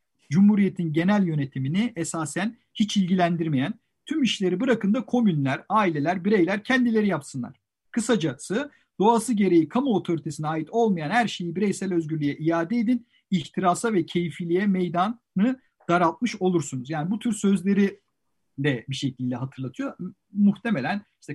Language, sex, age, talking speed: Turkish, male, 50-69, 125 wpm